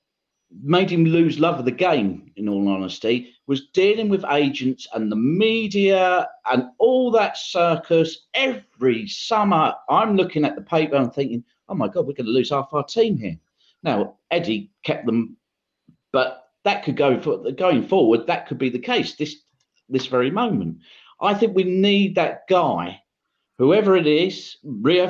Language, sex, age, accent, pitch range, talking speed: English, male, 40-59, British, 130-190 Hz, 170 wpm